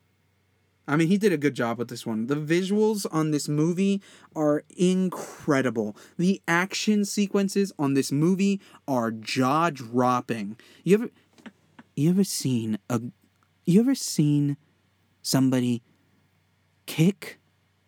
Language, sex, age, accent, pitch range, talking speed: English, male, 30-49, American, 95-155 Hz, 120 wpm